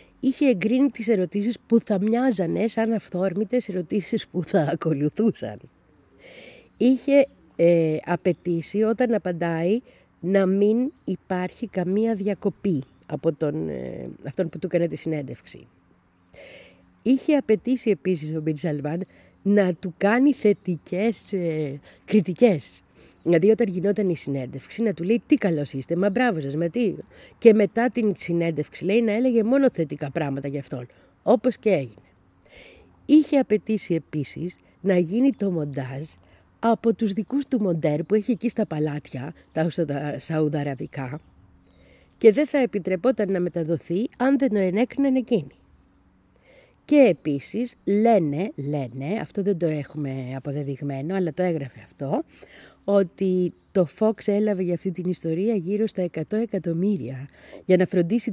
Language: Greek